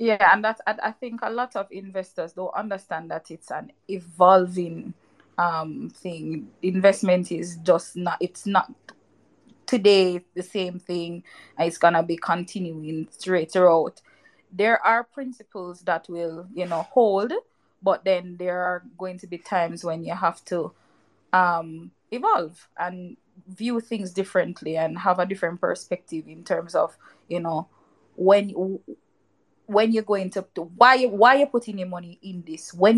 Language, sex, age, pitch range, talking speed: English, female, 20-39, 175-215 Hz, 155 wpm